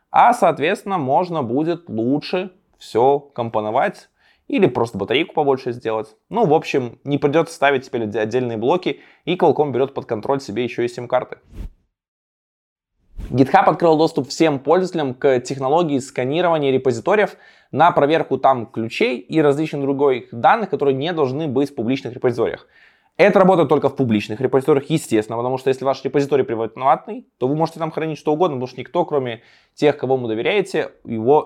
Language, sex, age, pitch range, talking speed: Russian, male, 20-39, 125-170 Hz, 160 wpm